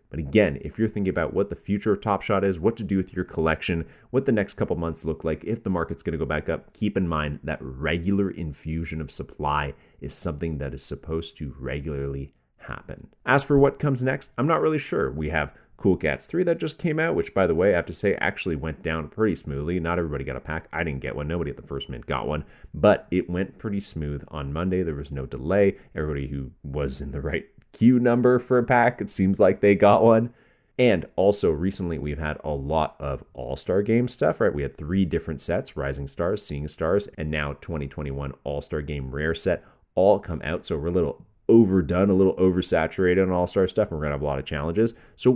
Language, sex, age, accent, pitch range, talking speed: English, male, 30-49, American, 75-105 Hz, 235 wpm